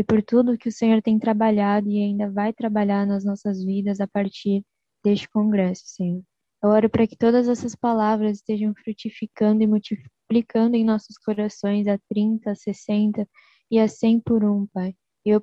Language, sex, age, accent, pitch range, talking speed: Portuguese, female, 10-29, Brazilian, 200-220 Hz, 175 wpm